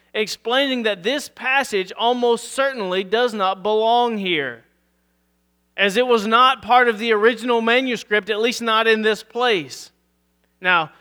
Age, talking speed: 30-49, 140 wpm